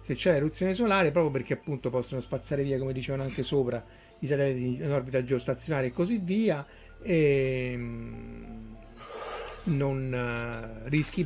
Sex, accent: male, native